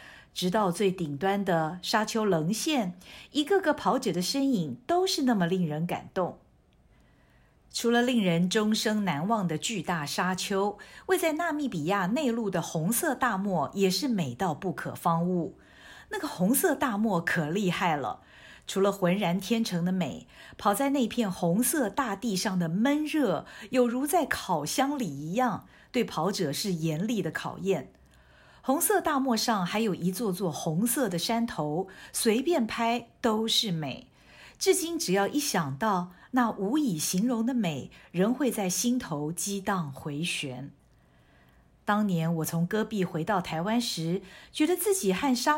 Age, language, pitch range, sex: 50-69, Chinese, 180-255 Hz, female